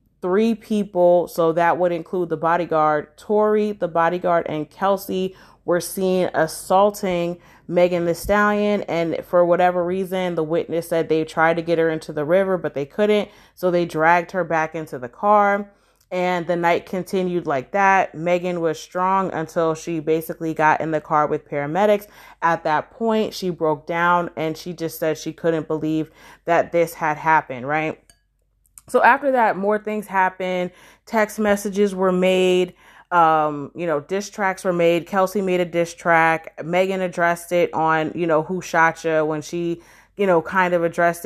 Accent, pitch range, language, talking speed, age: American, 160-185 Hz, English, 175 wpm, 30-49